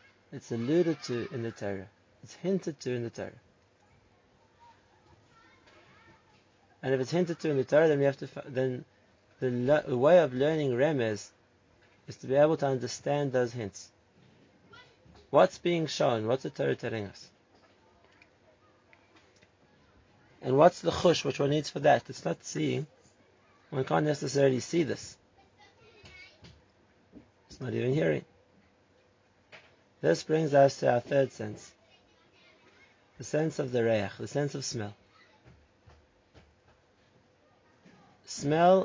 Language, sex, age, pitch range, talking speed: English, male, 30-49, 115-150 Hz, 125 wpm